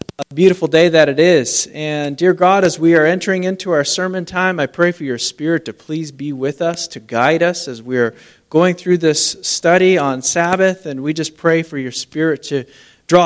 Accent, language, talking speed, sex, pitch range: American, English, 210 wpm, male, 140-175 Hz